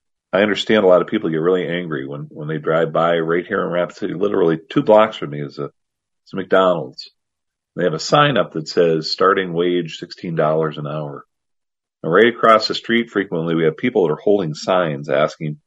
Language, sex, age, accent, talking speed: English, male, 40-59, American, 215 wpm